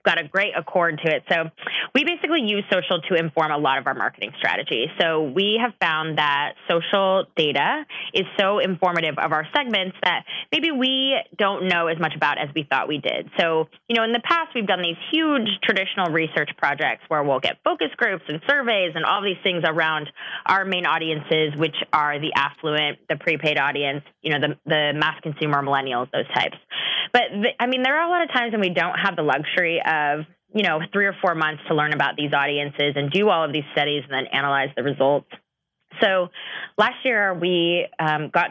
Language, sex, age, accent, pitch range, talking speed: English, female, 20-39, American, 150-200 Hz, 205 wpm